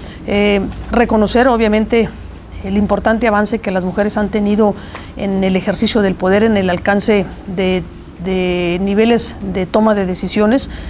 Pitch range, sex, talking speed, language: 190-220 Hz, female, 145 wpm, English